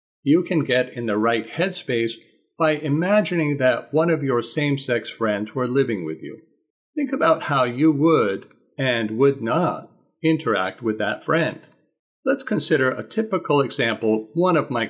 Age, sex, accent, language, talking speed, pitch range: 50-69, male, American, English, 155 wpm, 115-160 Hz